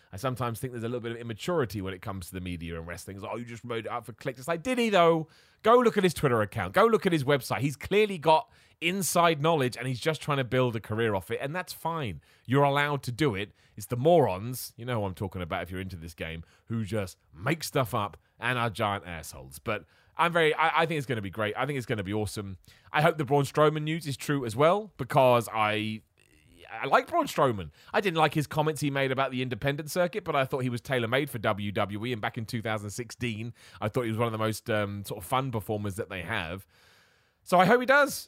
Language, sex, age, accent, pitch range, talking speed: English, male, 30-49, British, 105-155 Hz, 260 wpm